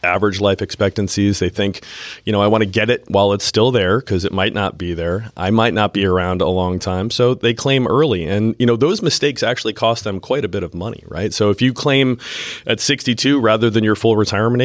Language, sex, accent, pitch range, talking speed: English, male, American, 90-115 Hz, 240 wpm